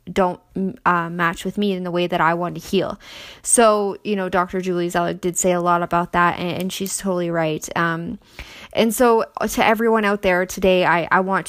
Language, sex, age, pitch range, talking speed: English, female, 10-29, 170-195 Hz, 215 wpm